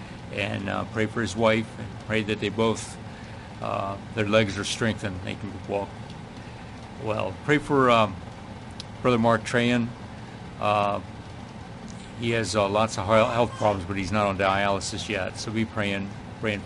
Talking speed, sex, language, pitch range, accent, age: 160 wpm, male, English, 100-120 Hz, American, 60-79